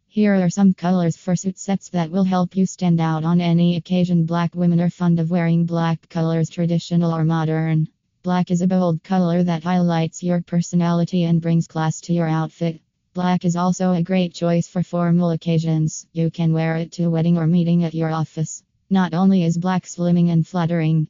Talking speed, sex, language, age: 200 wpm, female, English, 20-39